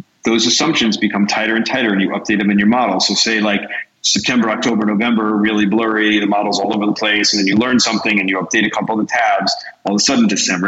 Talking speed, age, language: 255 wpm, 40-59, English